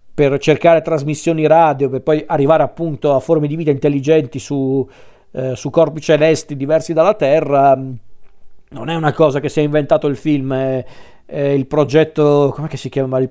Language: Italian